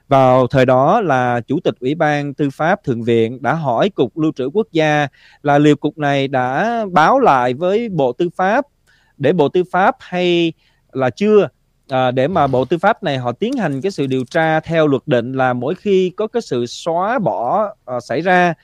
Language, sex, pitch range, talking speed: Vietnamese, male, 130-175 Hz, 205 wpm